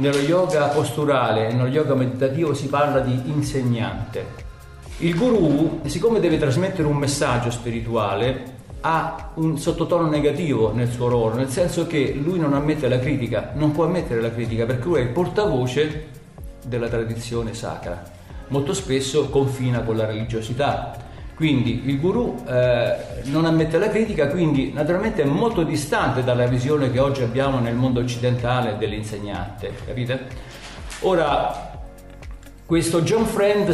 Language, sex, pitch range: Italian, male, 125-165 Hz